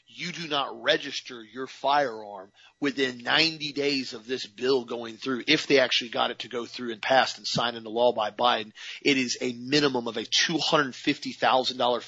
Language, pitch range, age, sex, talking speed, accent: English, 120-145 Hz, 40-59, male, 185 wpm, American